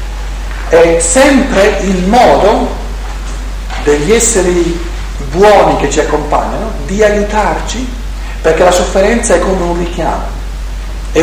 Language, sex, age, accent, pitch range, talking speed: Italian, male, 50-69, native, 140-200 Hz, 105 wpm